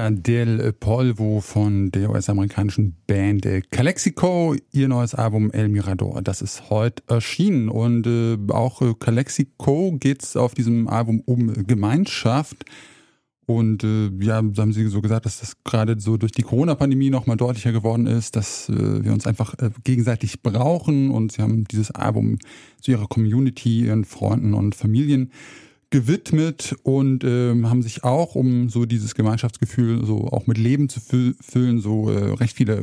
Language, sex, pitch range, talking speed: German, male, 110-135 Hz, 155 wpm